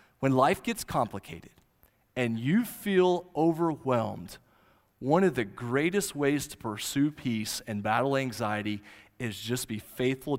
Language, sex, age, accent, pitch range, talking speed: English, male, 30-49, American, 120-185 Hz, 135 wpm